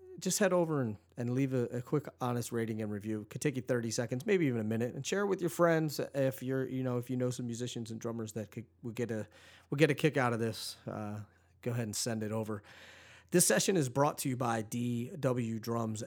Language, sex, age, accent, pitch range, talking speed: English, male, 30-49, American, 110-130 Hz, 260 wpm